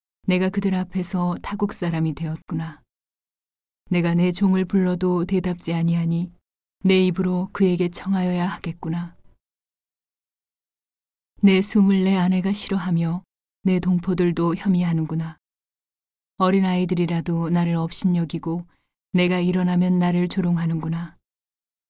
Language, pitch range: Korean, 170-190 Hz